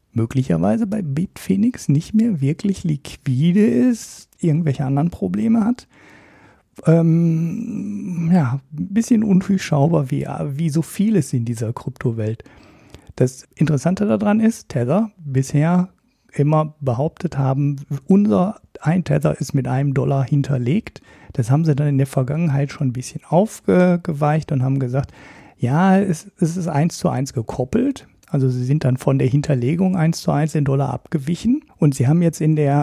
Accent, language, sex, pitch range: German, German, male, 140-180 Hz